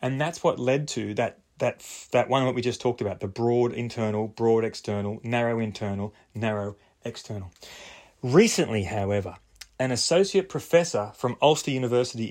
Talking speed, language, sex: 150 wpm, English, male